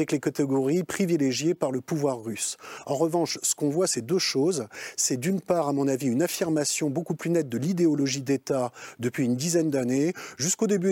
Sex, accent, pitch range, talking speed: male, French, 140-180 Hz, 200 wpm